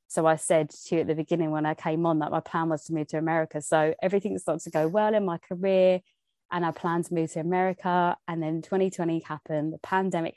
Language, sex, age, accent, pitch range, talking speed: English, female, 20-39, British, 160-195 Hz, 245 wpm